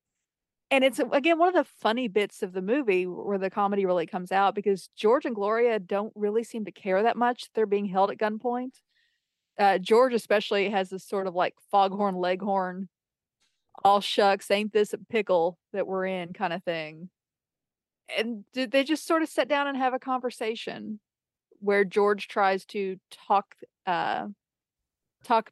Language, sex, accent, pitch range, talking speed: English, female, American, 190-235 Hz, 175 wpm